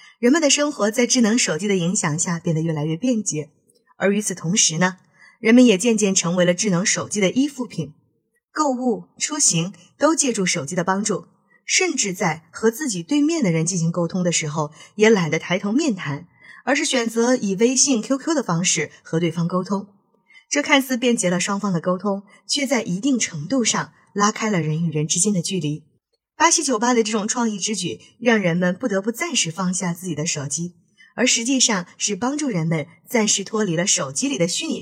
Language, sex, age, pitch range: Chinese, female, 20-39, 175-245 Hz